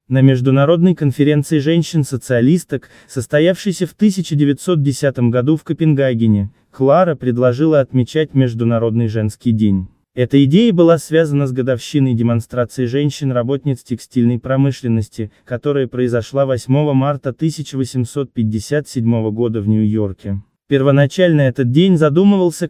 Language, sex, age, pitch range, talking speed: Russian, male, 20-39, 120-145 Hz, 100 wpm